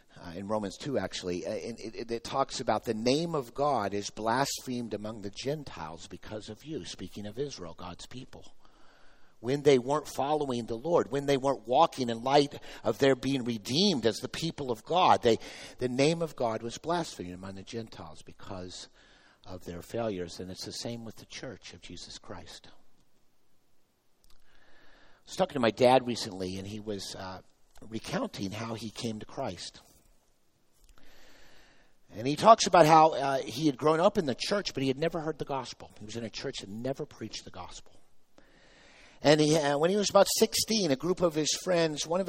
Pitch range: 110-155 Hz